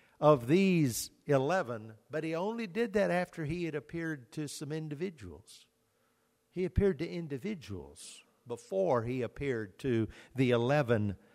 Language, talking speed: English, 130 wpm